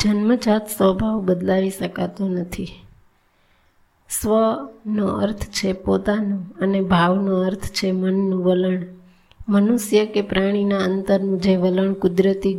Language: Gujarati